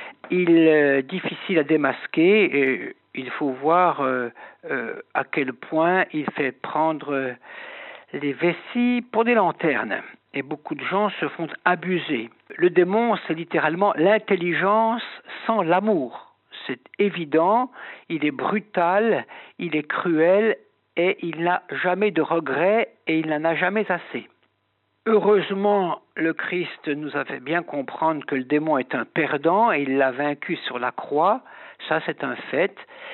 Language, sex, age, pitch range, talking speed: French, male, 60-79, 150-200 Hz, 150 wpm